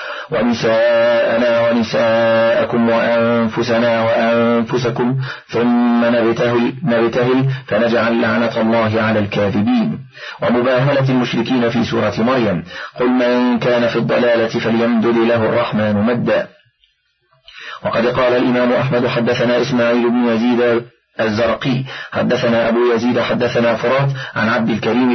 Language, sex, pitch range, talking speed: Arabic, male, 115-125 Hz, 105 wpm